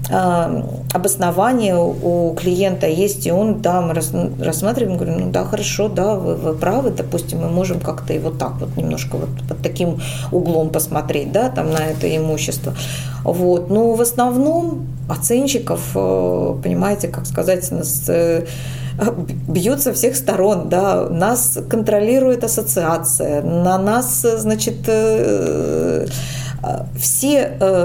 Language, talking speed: Russian, 125 wpm